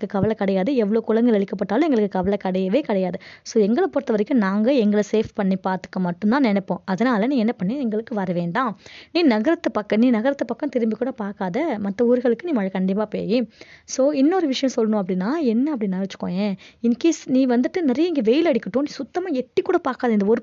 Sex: female